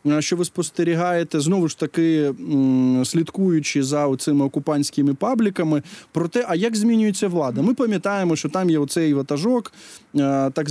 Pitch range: 145-195 Hz